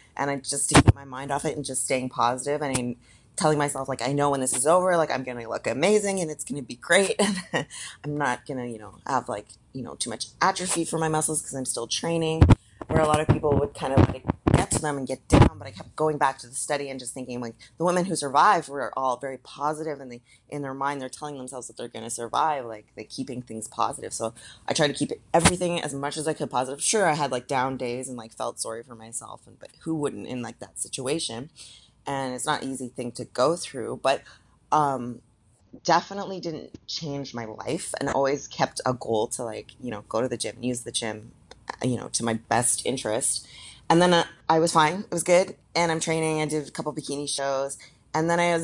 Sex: female